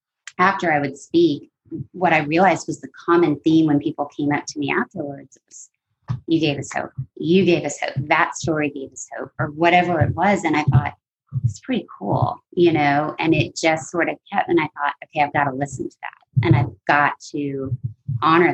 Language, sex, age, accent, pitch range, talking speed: English, female, 30-49, American, 140-175 Hz, 210 wpm